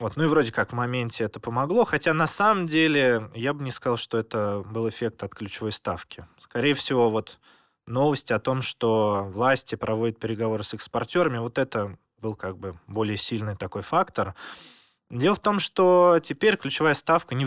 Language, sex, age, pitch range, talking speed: Russian, male, 20-39, 100-130 Hz, 180 wpm